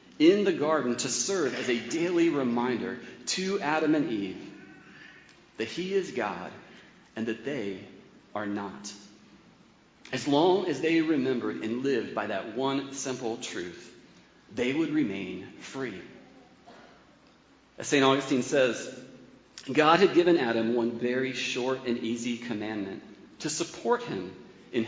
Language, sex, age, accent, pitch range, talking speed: English, male, 40-59, American, 125-195 Hz, 135 wpm